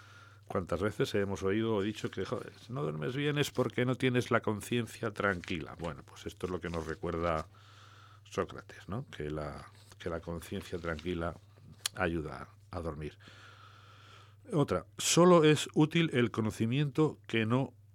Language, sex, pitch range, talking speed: English, male, 90-110 Hz, 155 wpm